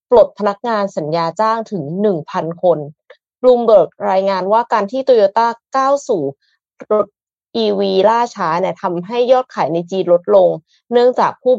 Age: 20-39